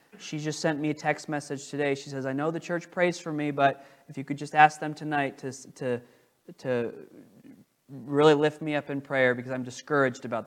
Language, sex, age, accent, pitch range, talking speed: English, male, 20-39, American, 130-160 Hz, 220 wpm